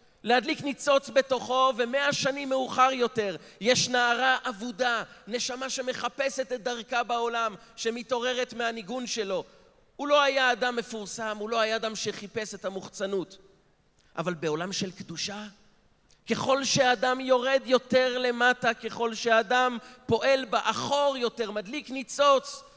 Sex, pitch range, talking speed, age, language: male, 210-260 Hz, 120 wpm, 40-59, Hebrew